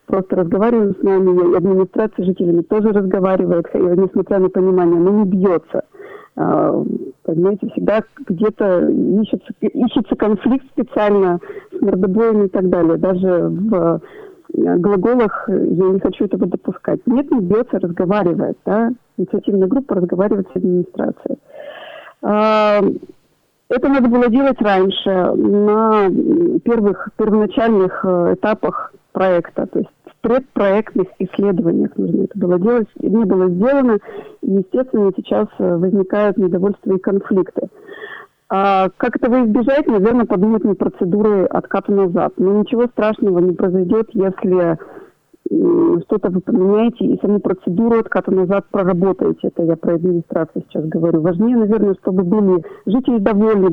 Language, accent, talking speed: Russian, native, 130 wpm